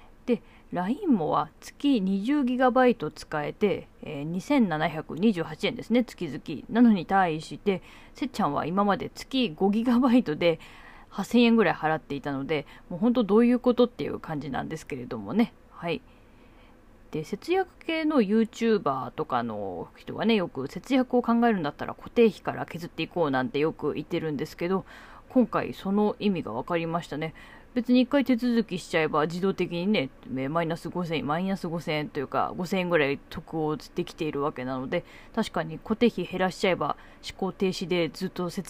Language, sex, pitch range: Japanese, female, 160-230 Hz